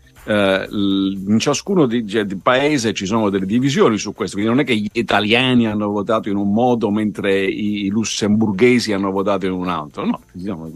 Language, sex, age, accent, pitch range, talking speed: Italian, male, 50-69, native, 95-130 Hz, 190 wpm